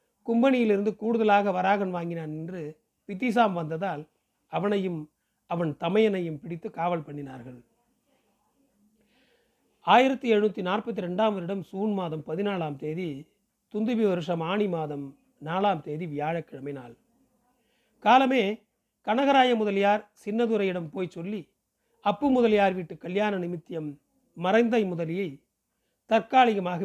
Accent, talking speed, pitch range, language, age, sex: native, 95 wpm, 165-220 Hz, Tamil, 40-59, male